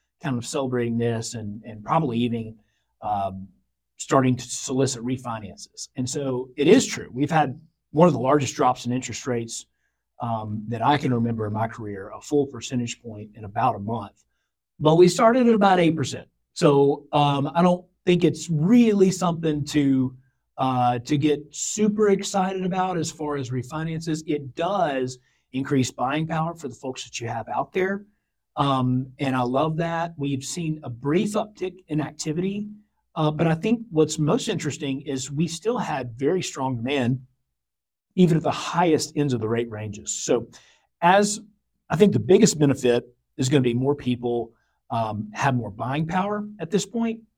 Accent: American